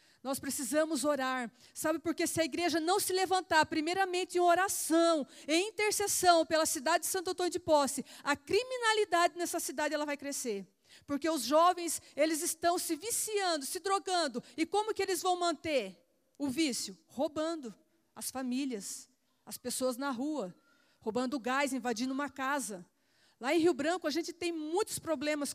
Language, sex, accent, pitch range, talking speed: Portuguese, female, Brazilian, 275-340 Hz, 160 wpm